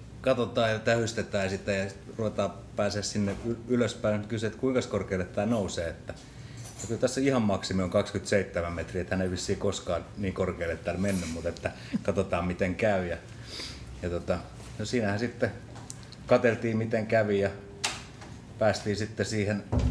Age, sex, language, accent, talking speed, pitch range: 30-49, male, Finnish, native, 140 wpm, 95-115 Hz